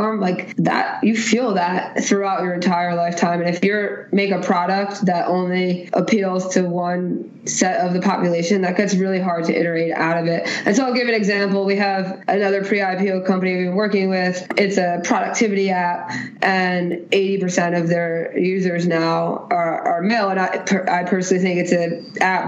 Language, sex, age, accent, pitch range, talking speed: English, female, 20-39, American, 180-200 Hz, 185 wpm